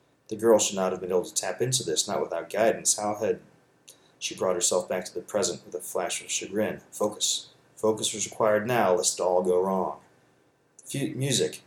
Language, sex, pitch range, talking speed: English, male, 100-120 Hz, 205 wpm